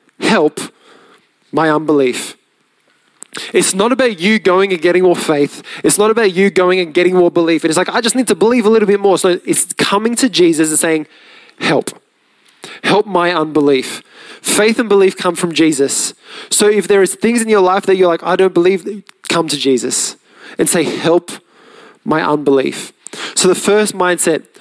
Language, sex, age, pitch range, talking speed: English, male, 20-39, 165-210 Hz, 185 wpm